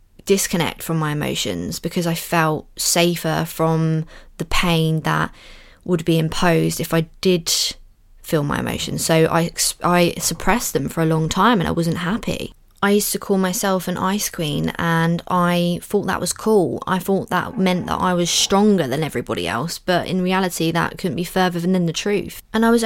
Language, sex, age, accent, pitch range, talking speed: English, female, 20-39, British, 165-200 Hz, 190 wpm